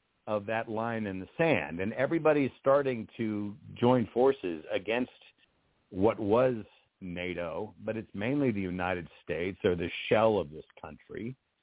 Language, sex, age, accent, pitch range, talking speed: English, male, 50-69, American, 100-130 Hz, 145 wpm